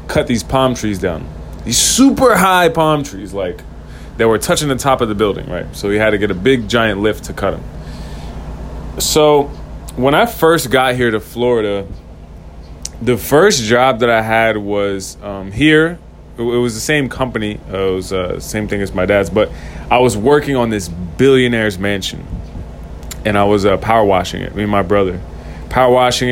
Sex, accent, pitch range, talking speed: male, American, 90-125 Hz, 190 wpm